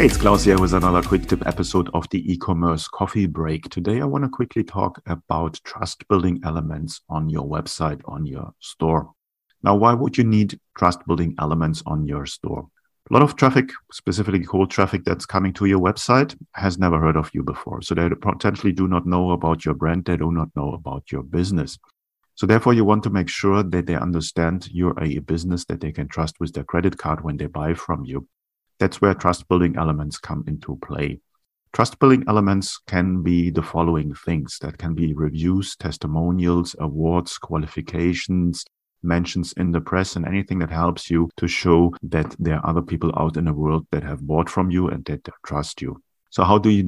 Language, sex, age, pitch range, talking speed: English, male, 40-59, 80-95 Hz, 195 wpm